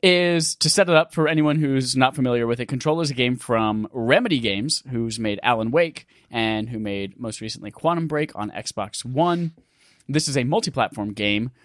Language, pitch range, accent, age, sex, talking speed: English, 110-150 Hz, American, 20-39, male, 195 wpm